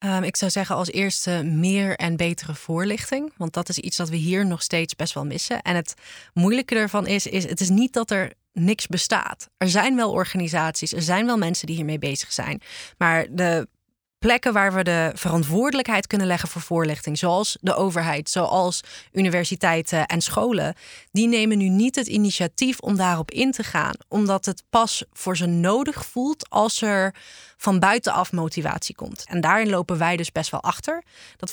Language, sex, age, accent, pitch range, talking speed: Dutch, female, 20-39, Dutch, 165-205 Hz, 185 wpm